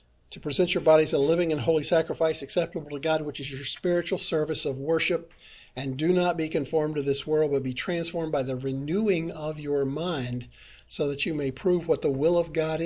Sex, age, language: male, 50-69, English